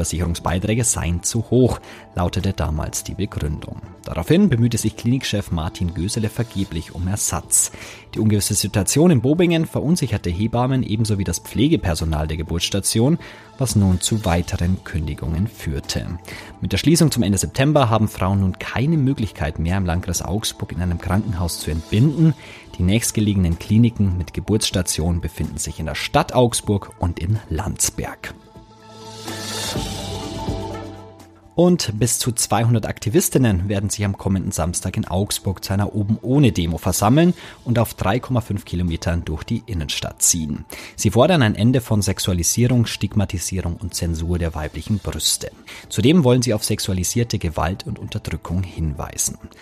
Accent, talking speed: German, 140 wpm